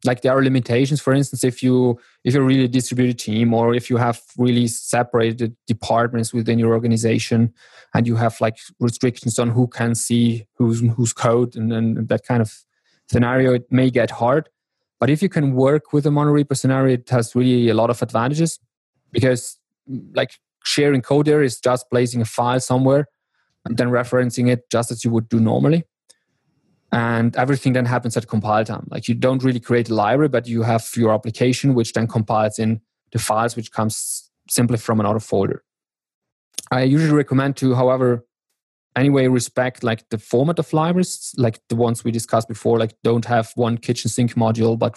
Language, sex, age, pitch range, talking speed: English, male, 20-39, 115-130 Hz, 185 wpm